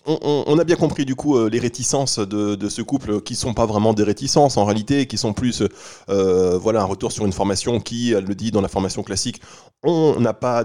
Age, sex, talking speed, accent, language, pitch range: 20-39, male, 255 wpm, French, French, 100-120 Hz